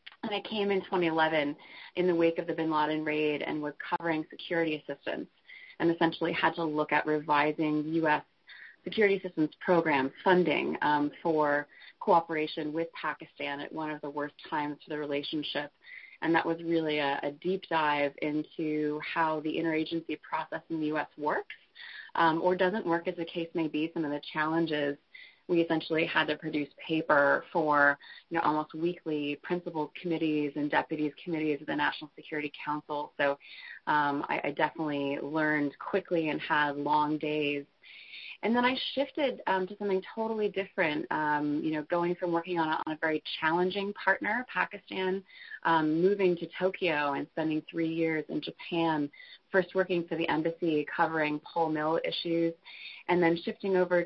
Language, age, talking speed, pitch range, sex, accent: English, 20-39, 170 wpm, 150-175 Hz, female, American